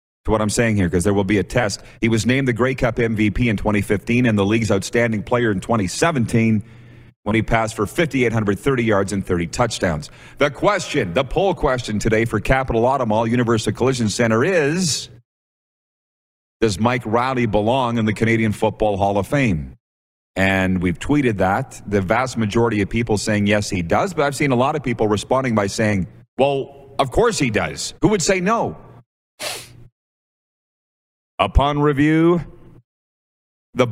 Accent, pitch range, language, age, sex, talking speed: American, 105-130 Hz, English, 40-59, male, 170 wpm